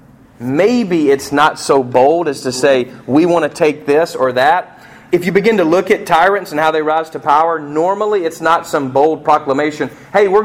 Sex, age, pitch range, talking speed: male, 40-59, 135-215 Hz, 205 wpm